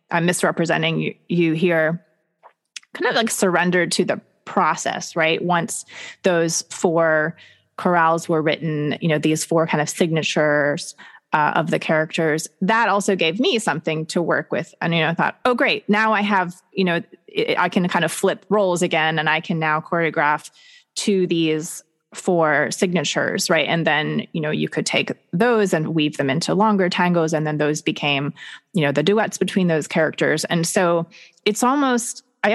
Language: English